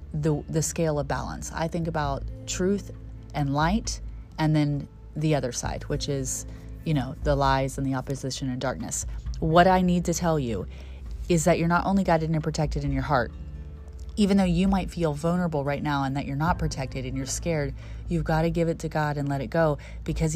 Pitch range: 145-180 Hz